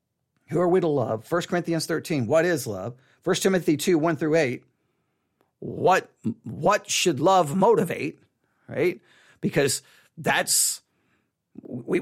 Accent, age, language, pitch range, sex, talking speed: American, 40-59, English, 150-210 Hz, male, 130 wpm